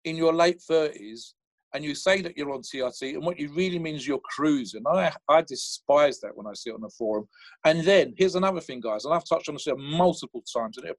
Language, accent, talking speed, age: English, British, 245 wpm, 50-69